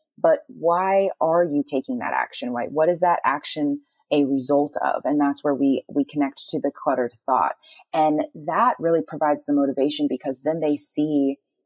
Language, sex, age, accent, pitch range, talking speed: English, female, 20-39, American, 140-170 Hz, 180 wpm